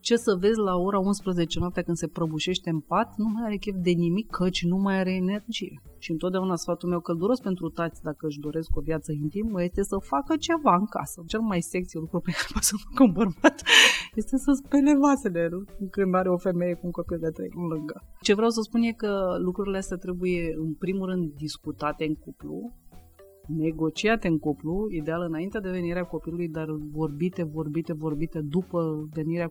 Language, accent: Romanian, native